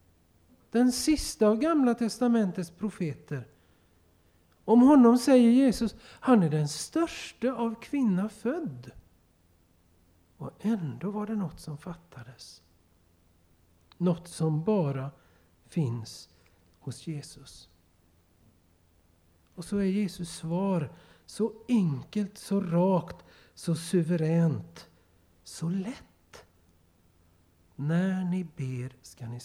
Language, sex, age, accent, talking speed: Swedish, male, 60-79, native, 100 wpm